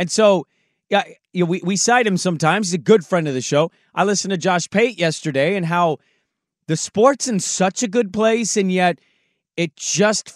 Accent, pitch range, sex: American, 165-220 Hz, male